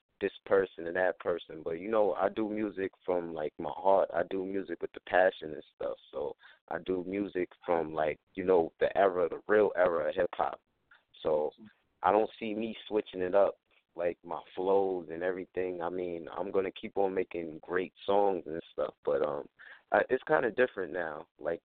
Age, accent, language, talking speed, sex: 30-49, American, English, 195 wpm, male